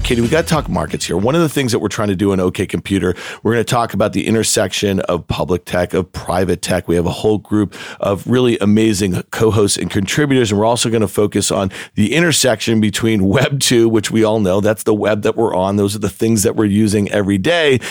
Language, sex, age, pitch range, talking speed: English, male, 40-59, 100-115 Hz, 250 wpm